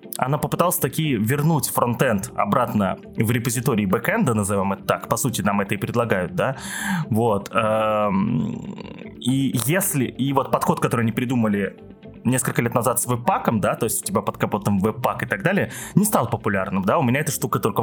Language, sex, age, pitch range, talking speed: Russian, male, 20-39, 110-150 Hz, 180 wpm